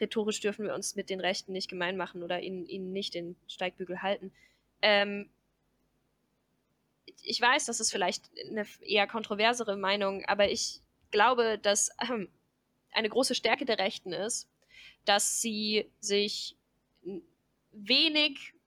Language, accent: German, German